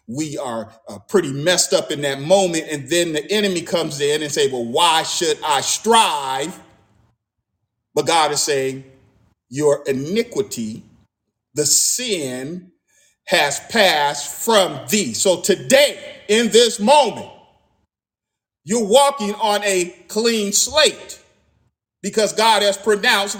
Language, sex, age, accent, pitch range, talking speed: English, male, 40-59, American, 145-205 Hz, 125 wpm